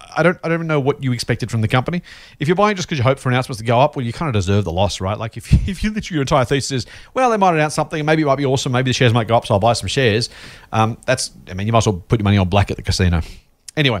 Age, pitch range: 30-49, 105-150 Hz